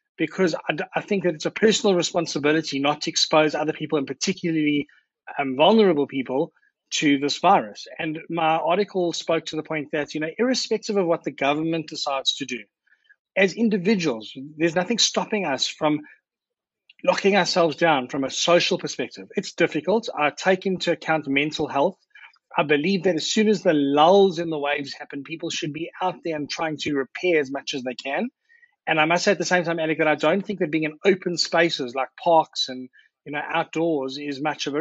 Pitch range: 150-185 Hz